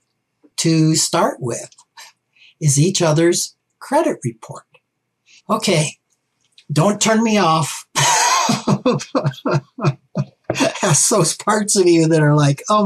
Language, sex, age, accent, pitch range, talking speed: English, male, 60-79, American, 135-180 Hz, 105 wpm